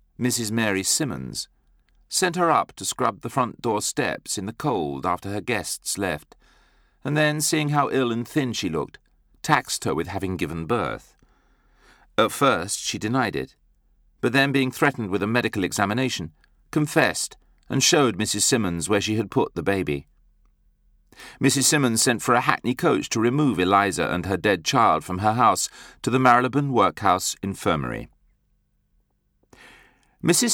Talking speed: 160 wpm